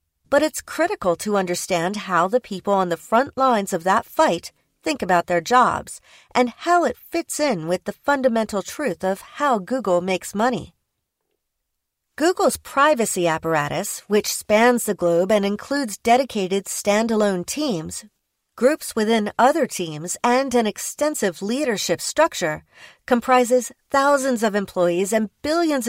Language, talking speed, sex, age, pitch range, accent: English, 140 wpm, female, 40-59, 185-250 Hz, American